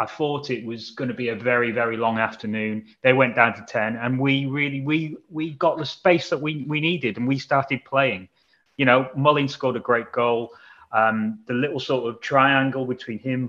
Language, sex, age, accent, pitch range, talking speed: English, male, 30-49, British, 120-140 Hz, 215 wpm